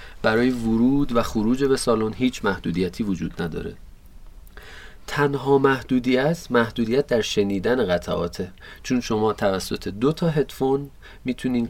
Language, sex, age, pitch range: Persian, male, 40-59, 100-135 Hz